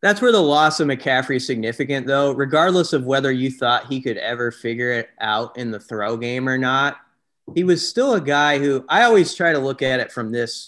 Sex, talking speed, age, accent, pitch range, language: male, 230 wpm, 30-49, American, 120-145 Hz, English